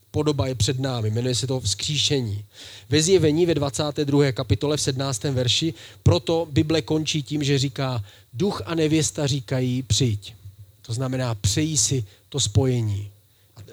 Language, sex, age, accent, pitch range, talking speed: Czech, male, 40-59, native, 110-140 Hz, 150 wpm